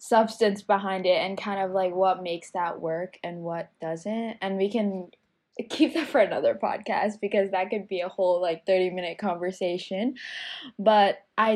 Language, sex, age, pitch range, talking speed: English, female, 10-29, 175-210 Hz, 175 wpm